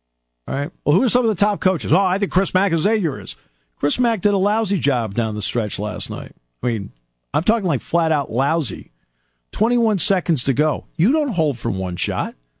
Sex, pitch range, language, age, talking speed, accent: male, 115-185 Hz, English, 50-69, 220 wpm, American